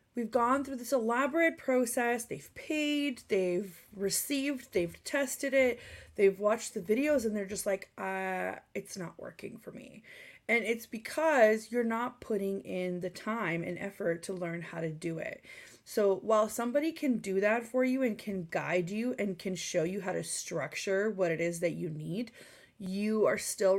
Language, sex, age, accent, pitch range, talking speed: English, female, 20-39, American, 185-240 Hz, 180 wpm